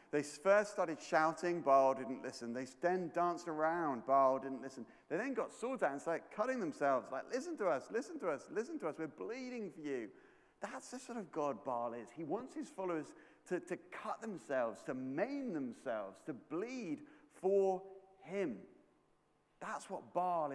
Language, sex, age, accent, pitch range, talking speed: English, male, 40-59, British, 135-200 Hz, 180 wpm